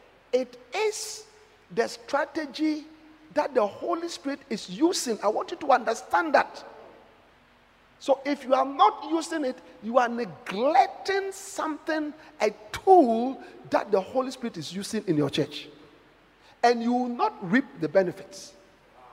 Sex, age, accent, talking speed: male, 50-69, Nigerian, 140 wpm